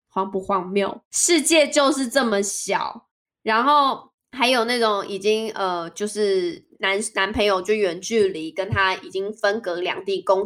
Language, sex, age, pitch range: Chinese, female, 20-39, 195-265 Hz